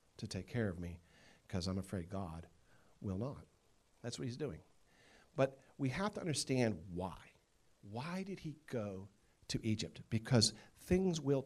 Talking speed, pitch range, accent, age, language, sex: 155 wpm, 90-140 Hz, American, 50-69, English, male